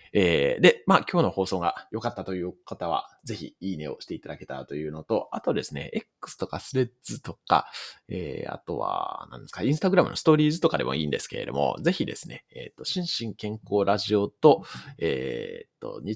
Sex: male